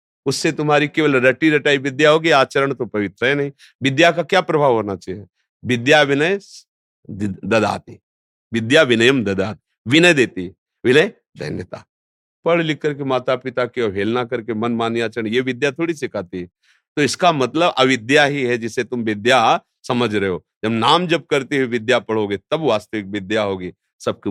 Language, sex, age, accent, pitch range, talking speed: Hindi, male, 50-69, native, 110-155 Hz, 160 wpm